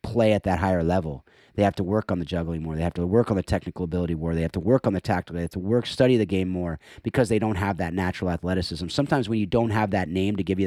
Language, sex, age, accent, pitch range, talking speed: English, male, 30-49, American, 90-110 Hz, 305 wpm